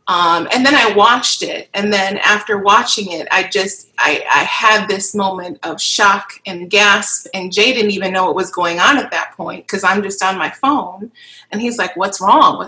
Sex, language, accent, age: female, English, American, 30-49